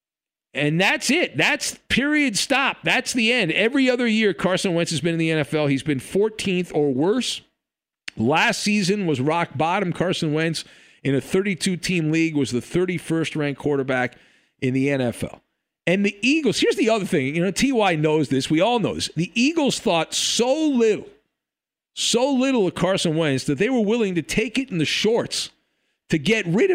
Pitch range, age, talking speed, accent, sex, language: 145-220 Hz, 50-69, 180 wpm, American, male, English